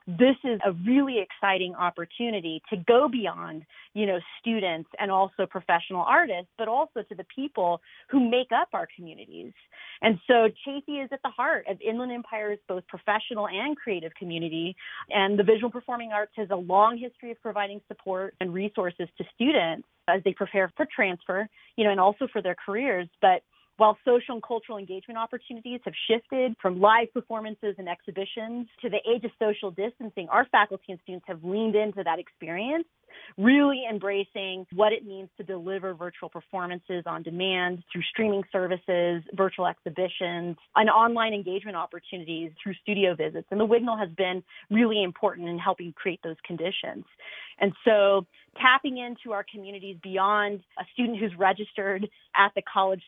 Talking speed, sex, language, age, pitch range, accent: 165 wpm, female, English, 30-49, 185-225 Hz, American